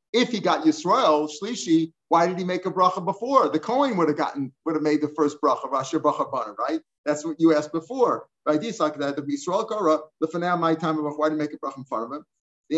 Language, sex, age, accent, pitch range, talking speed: English, male, 50-69, American, 155-185 Hz, 190 wpm